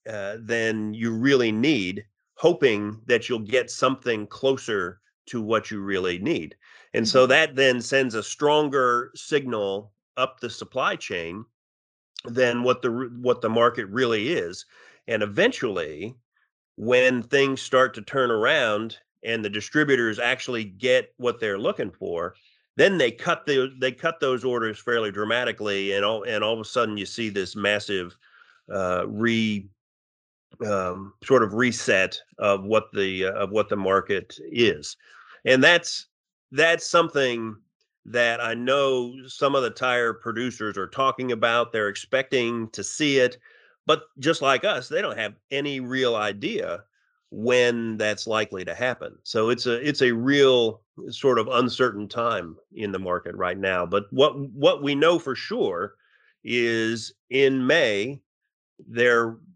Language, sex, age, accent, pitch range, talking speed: English, male, 40-59, American, 105-130 Hz, 150 wpm